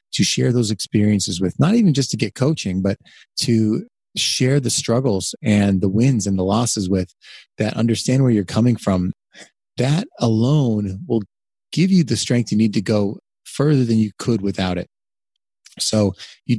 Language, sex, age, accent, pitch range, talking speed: English, male, 30-49, American, 100-135 Hz, 175 wpm